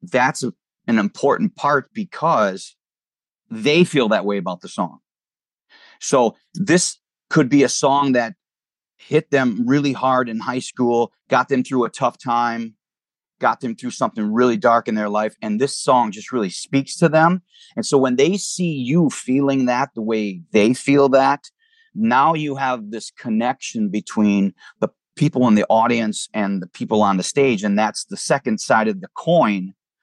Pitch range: 110-160 Hz